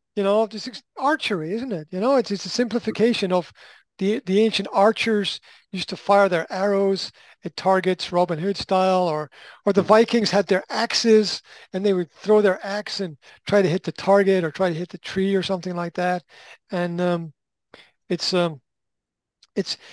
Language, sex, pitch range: English, male, 155-200 Hz